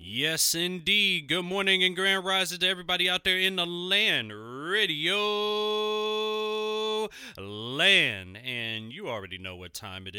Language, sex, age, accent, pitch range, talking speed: English, male, 30-49, American, 110-170 Hz, 135 wpm